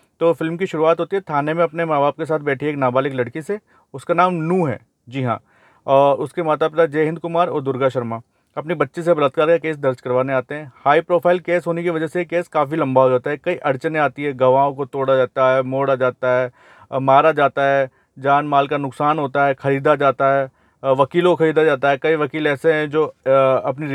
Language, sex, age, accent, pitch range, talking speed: Hindi, male, 40-59, native, 130-155 Hz, 230 wpm